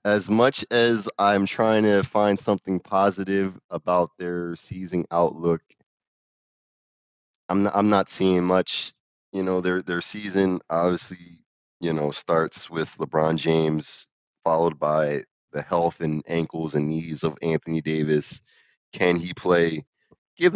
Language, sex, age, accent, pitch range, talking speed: English, male, 20-39, American, 80-95 Hz, 135 wpm